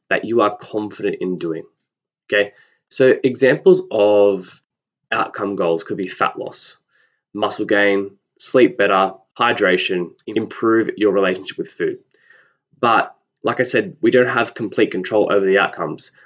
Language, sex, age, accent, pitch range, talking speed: English, male, 20-39, Australian, 100-120 Hz, 140 wpm